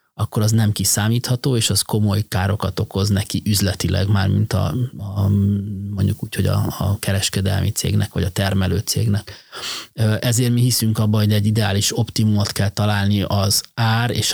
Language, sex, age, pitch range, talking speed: Hungarian, male, 30-49, 100-115 Hz, 165 wpm